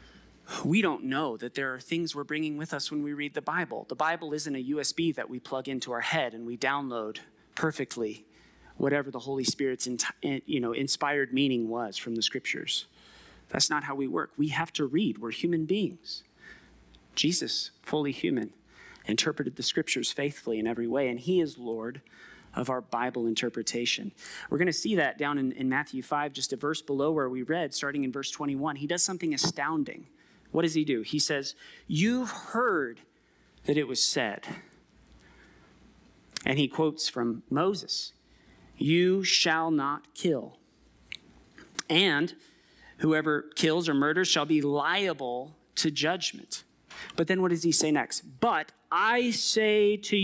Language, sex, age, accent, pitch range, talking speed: English, male, 30-49, American, 130-160 Hz, 165 wpm